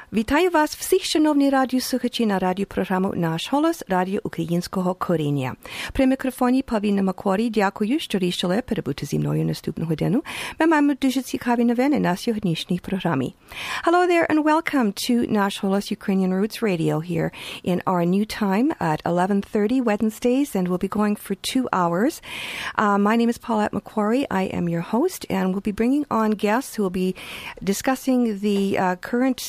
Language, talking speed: English, 95 wpm